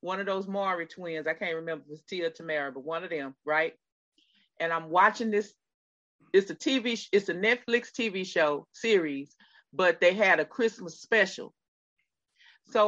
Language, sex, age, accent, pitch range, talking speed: English, female, 40-59, American, 160-220 Hz, 175 wpm